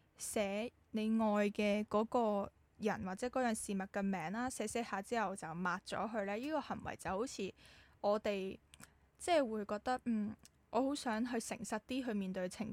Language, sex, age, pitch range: Chinese, female, 10-29, 190-225 Hz